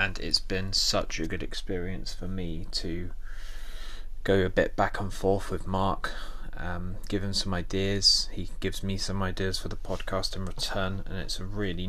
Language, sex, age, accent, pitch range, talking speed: English, male, 20-39, British, 85-100 Hz, 185 wpm